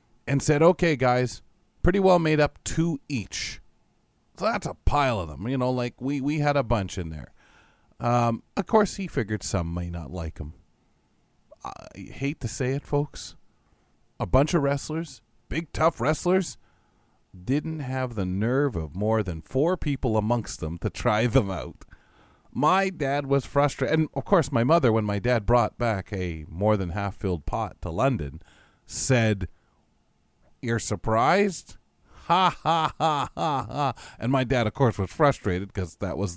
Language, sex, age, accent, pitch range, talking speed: English, male, 40-59, American, 95-140 Hz, 170 wpm